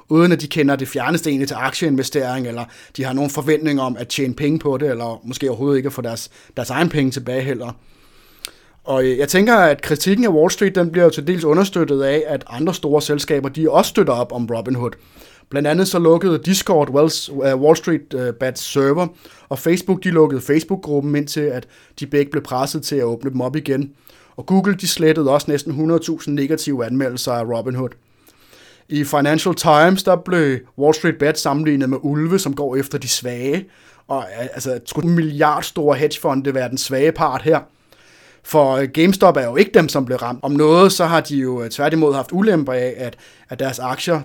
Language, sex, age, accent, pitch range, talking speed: Danish, male, 30-49, native, 125-155 Hz, 195 wpm